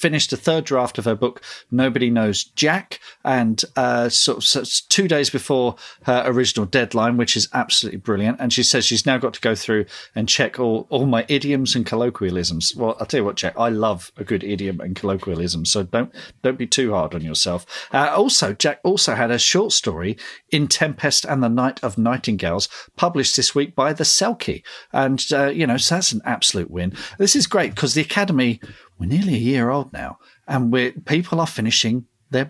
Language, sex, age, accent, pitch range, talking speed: English, male, 40-59, British, 110-135 Hz, 205 wpm